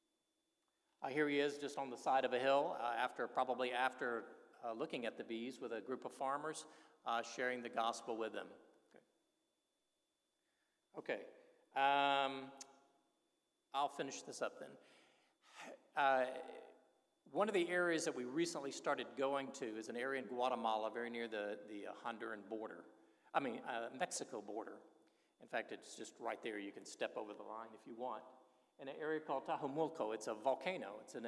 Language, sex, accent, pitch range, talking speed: English, male, American, 125-165 Hz, 175 wpm